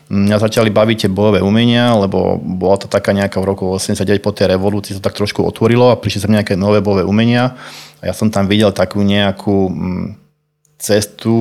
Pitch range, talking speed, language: 100-110 Hz, 190 wpm, Slovak